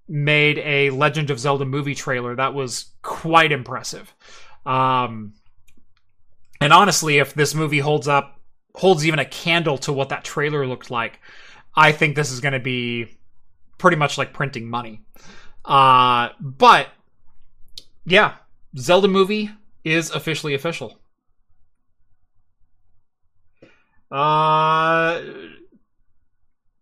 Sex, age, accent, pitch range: male, 20-39, American, 105-165 Hz